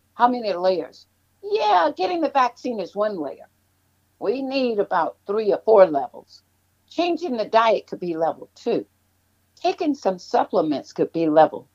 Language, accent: English, American